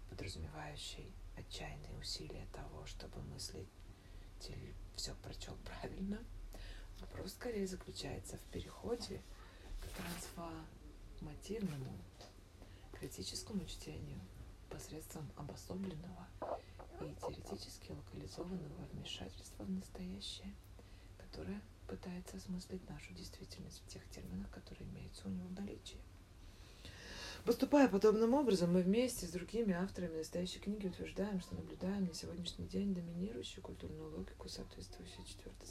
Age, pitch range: 30-49, 95-100 Hz